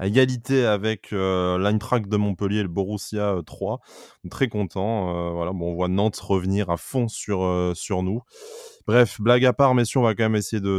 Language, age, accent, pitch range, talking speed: French, 20-39, French, 95-110 Hz, 210 wpm